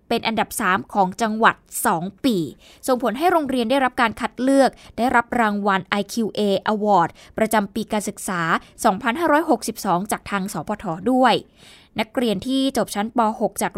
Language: Thai